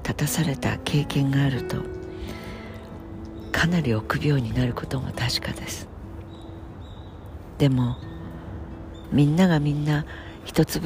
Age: 60-79